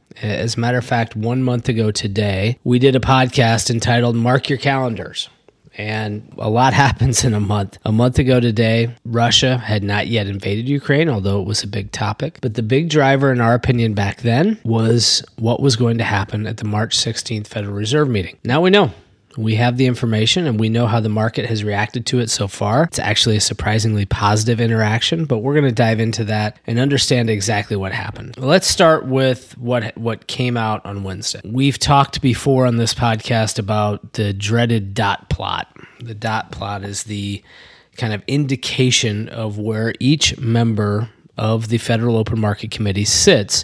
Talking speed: 190 wpm